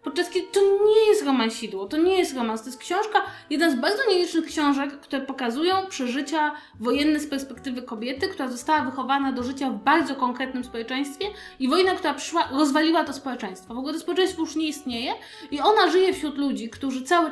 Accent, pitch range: native, 265-345 Hz